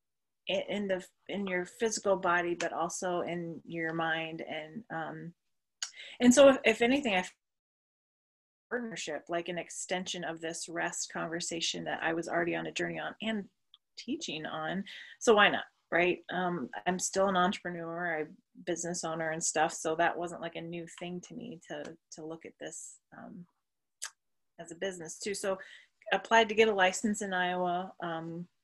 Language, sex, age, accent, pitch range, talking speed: English, female, 30-49, American, 170-195 Hz, 170 wpm